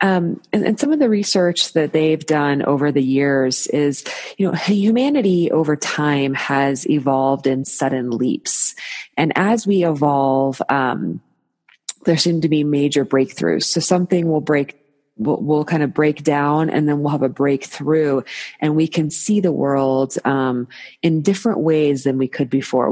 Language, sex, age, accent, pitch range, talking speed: English, female, 30-49, American, 135-165 Hz, 170 wpm